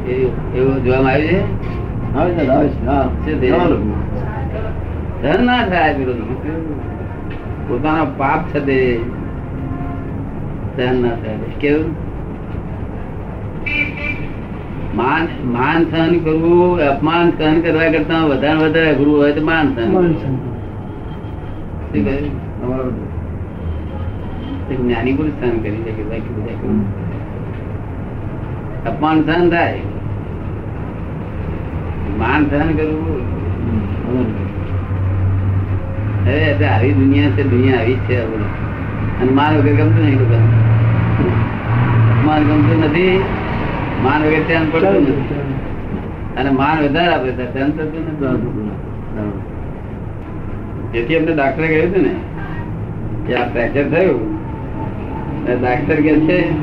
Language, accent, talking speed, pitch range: Gujarati, native, 30 wpm, 100-145 Hz